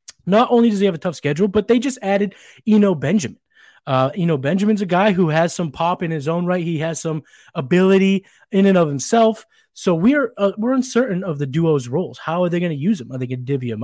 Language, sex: English, male